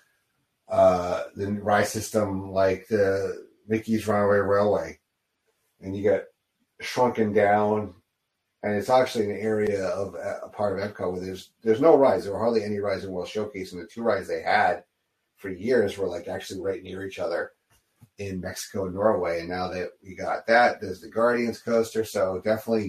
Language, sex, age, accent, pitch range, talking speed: English, male, 30-49, American, 95-110 Hz, 180 wpm